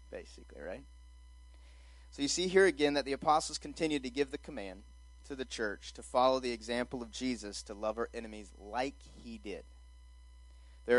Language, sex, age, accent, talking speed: English, male, 30-49, American, 175 wpm